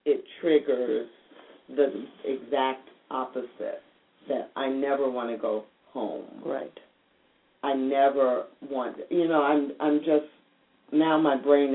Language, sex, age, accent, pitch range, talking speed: English, female, 50-69, American, 130-150 Hz, 125 wpm